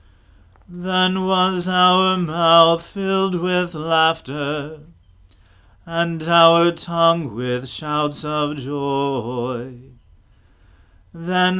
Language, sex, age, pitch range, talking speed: English, male, 40-59, 125-170 Hz, 80 wpm